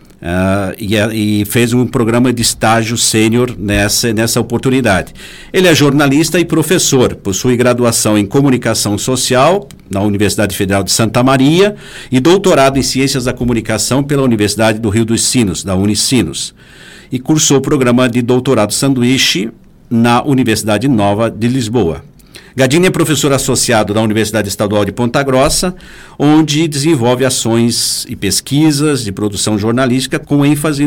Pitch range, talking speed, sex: 110-140 Hz, 140 wpm, male